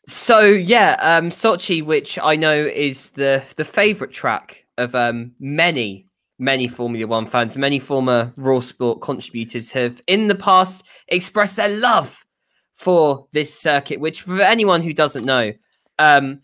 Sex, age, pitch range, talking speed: male, 10-29, 125-165 Hz, 150 wpm